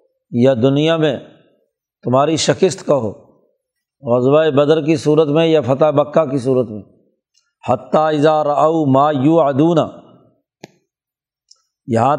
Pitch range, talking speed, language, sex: 140-160 Hz, 125 wpm, Urdu, male